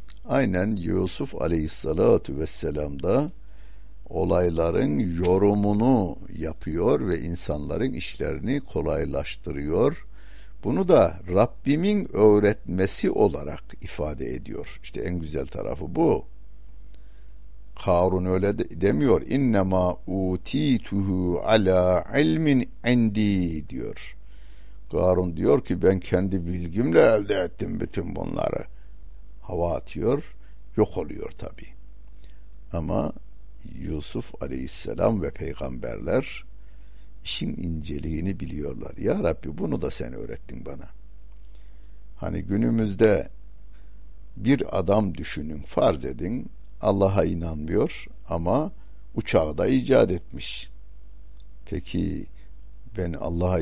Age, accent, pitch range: 60-79, native, 85-100 Hz